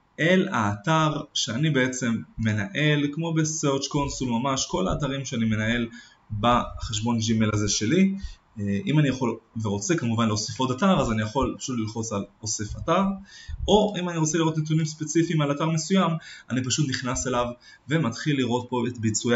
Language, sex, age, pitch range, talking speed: Hebrew, male, 20-39, 115-155 Hz, 160 wpm